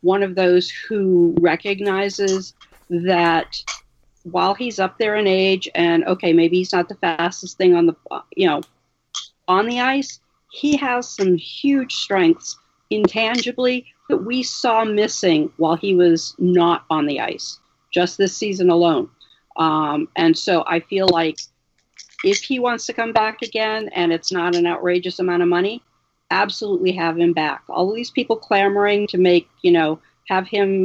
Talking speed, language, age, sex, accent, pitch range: 160 wpm, English, 50-69, female, American, 170-210 Hz